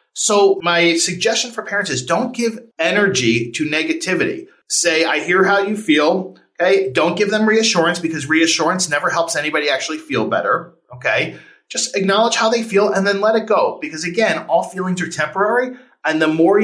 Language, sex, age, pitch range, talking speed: English, male, 40-59, 155-205 Hz, 180 wpm